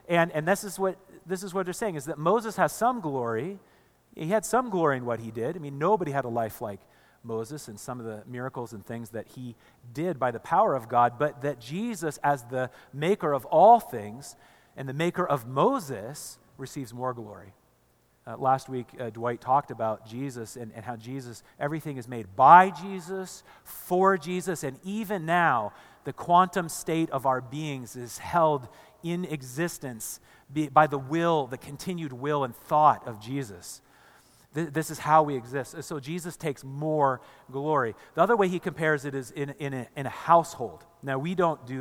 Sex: male